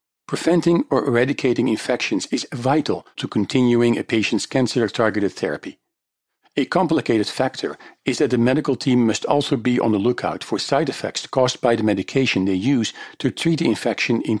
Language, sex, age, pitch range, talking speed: English, male, 50-69, 115-140 Hz, 165 wpm